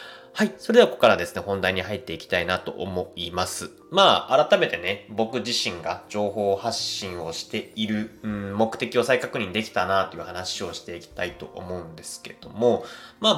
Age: 20-39